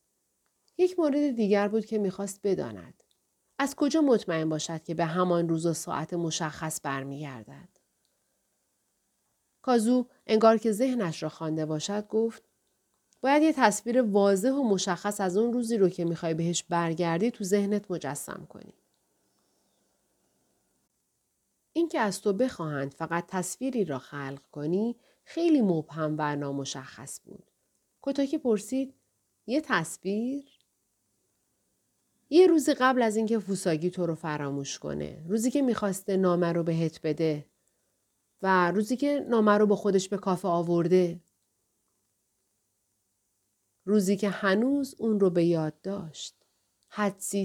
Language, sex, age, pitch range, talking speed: Persian, female, 40-59, 160-220 Hz, 125 wpm